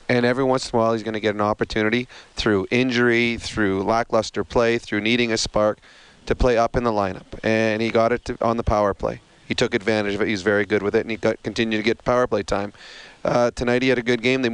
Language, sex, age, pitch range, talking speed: English, male, 30-49, 110-125 Hz, 250 wpm